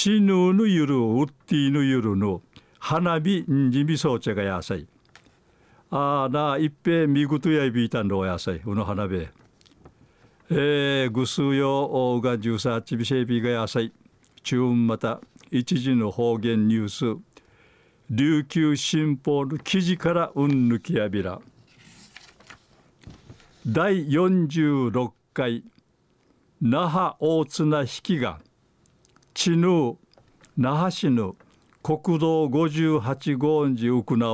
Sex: male